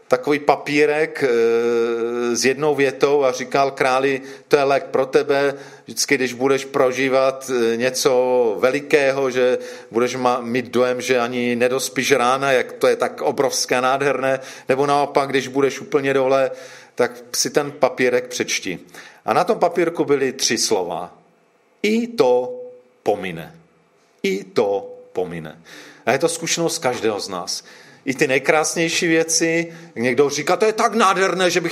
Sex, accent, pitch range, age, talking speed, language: male, native, 130-180 Hz, 40-59, 145 wpm, Czech